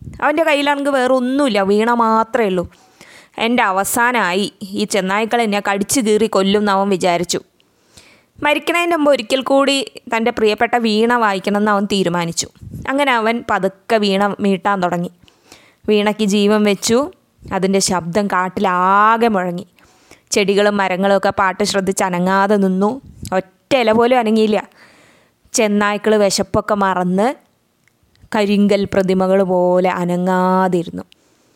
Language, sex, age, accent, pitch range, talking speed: Malayalam, female, 20-39, native, 190-230 Hz, 105 wpm